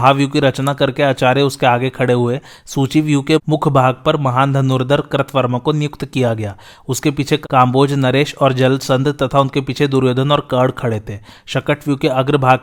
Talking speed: 115 wpm